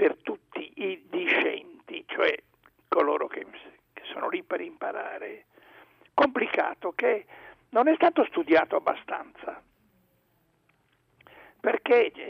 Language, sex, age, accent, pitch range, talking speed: Italian, male, 60-79, native, 260-395 Hz, 100 wpm